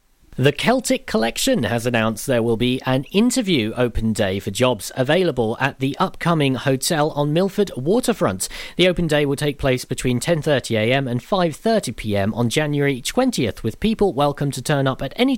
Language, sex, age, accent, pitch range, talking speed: English, male, 40-59, British, 120-175 Hz, 170 wpm